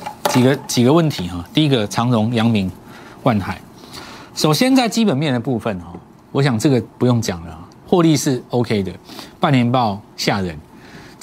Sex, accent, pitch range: male, native, 100-150 Hz